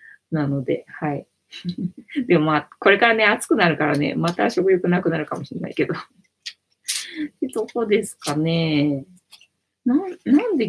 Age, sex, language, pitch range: 20-39, female, Japanese, 150-210 Hz